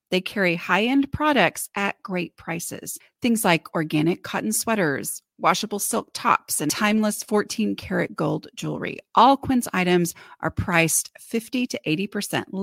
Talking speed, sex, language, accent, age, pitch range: 135 wpm, female, English, American, 30-49, 175-245 Hz